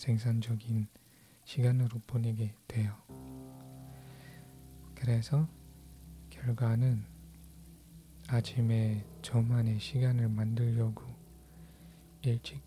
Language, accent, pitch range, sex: Korean, native, 80-120 Hz, male